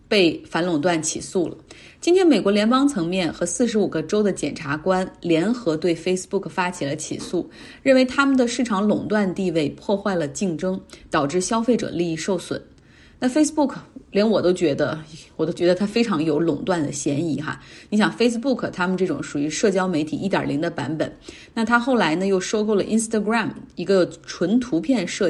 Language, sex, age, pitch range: Chinese, female, 30-49, 170-230 Hz